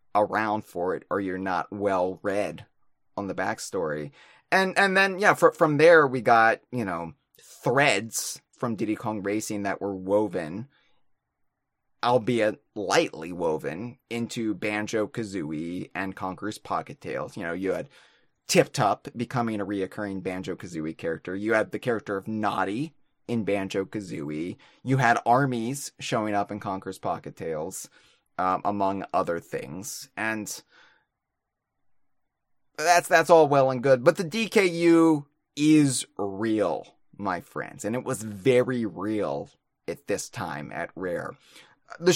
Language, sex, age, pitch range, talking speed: English, male, 20-39, 100-140 Hz, 135 wpm